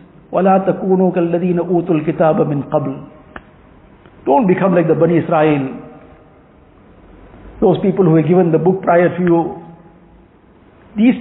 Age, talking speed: 50-69, 125 wpm